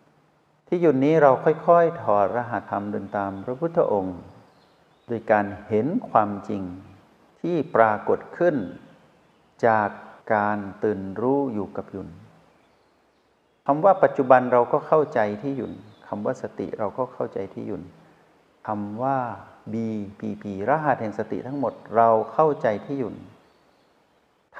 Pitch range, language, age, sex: 100-135 Hz, Thai, 60-79, male